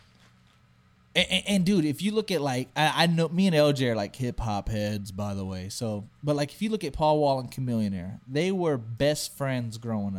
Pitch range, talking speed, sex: 115-150 Hz, 230 wpm, male